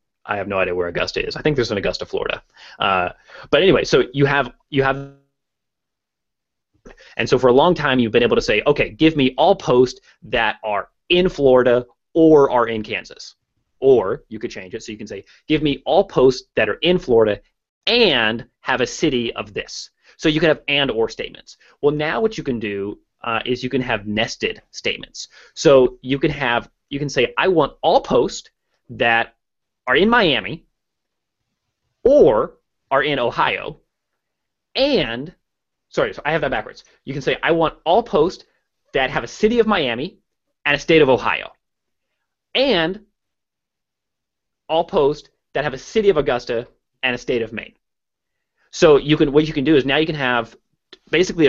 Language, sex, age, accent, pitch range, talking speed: English, male, 30-49, American, 125-185 Hz, 185 wpm